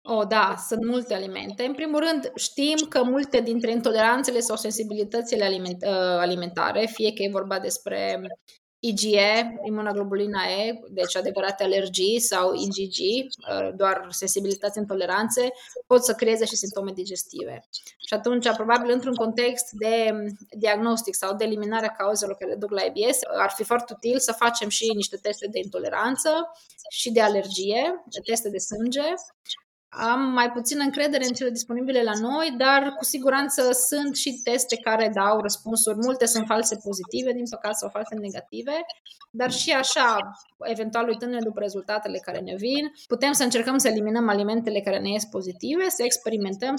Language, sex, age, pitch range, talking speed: Romanian, female, 20-39, 200-245 Hz, 160 wpm